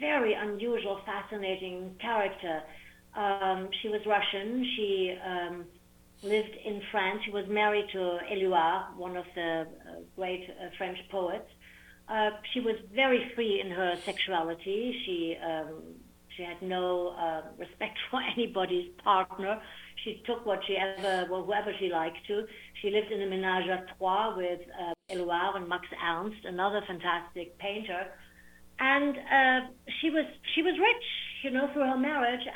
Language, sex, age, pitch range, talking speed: English, female, 60-79, 180-240 Hz, 145 wpm